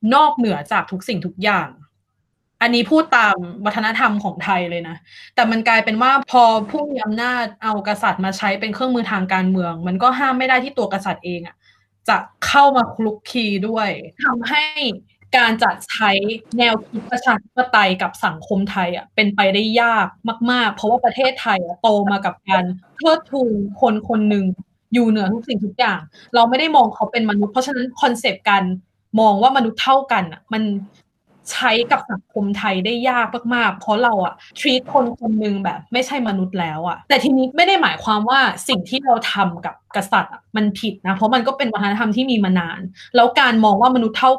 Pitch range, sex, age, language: 195-250 Hz, female, 20-39, Thai